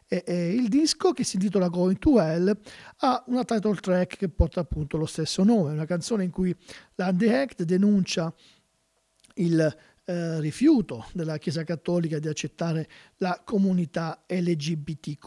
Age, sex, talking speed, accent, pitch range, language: 50-69, male, 145 wpm, native, 160-200 Hz, Italian